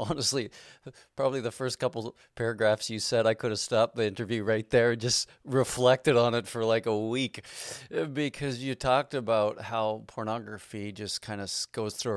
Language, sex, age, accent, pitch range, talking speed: English, male, 40-59, American, 110-140 Hz, 180 wpm